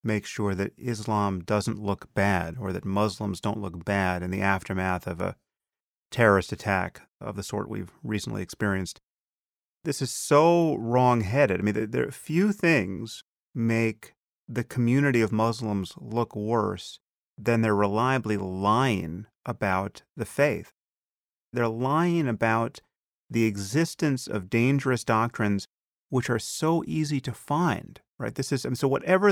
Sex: male